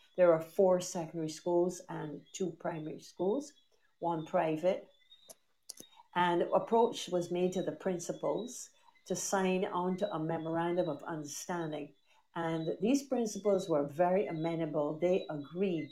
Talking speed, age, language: 125 wpm, 60-79, English